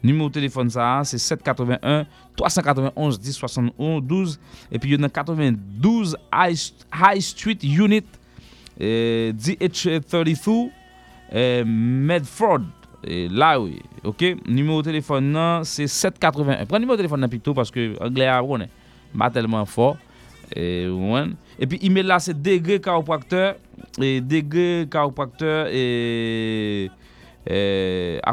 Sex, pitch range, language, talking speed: male, 120-165 Hz, English, 130 wpm